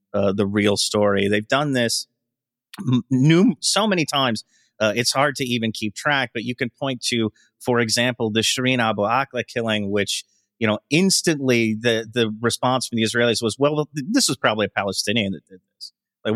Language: English